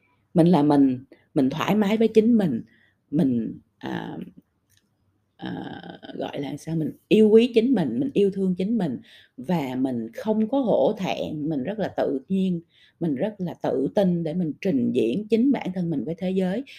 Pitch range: 150-220 Hz